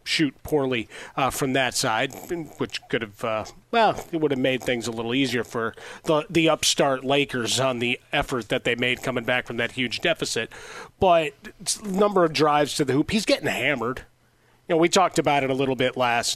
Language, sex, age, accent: English, male, 40-59, American